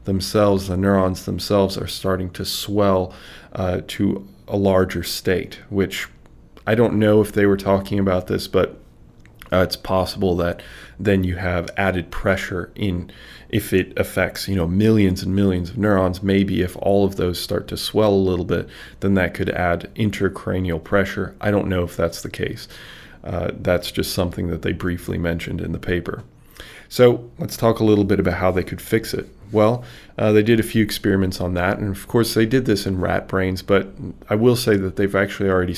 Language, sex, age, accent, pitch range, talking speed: English, male, 20-39, American, 90-100 Hz, 195 wpm